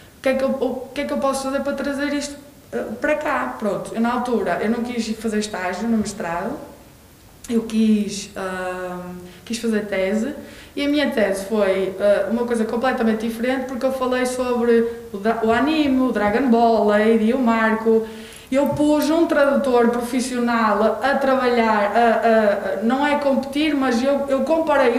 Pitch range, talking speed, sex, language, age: 220-270 Hz, 170 wpm, female, Portuguese, 20-39